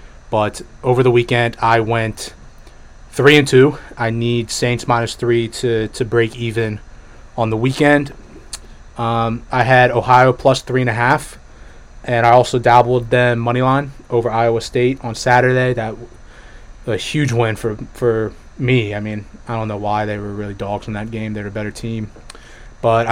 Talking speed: 175 wpm